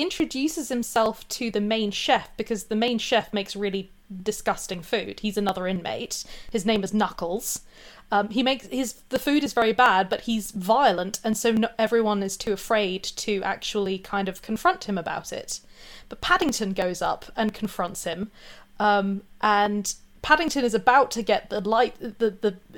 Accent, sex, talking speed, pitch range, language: British, female, 175 wpm, 205-250 Hz, English